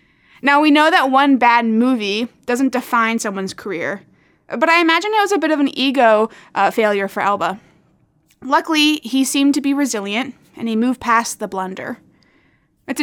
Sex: female